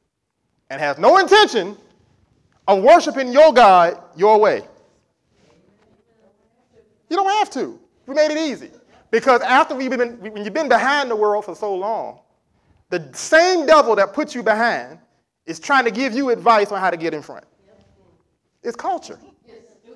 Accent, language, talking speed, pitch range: American, English, 155 wpm, 210-290 Hz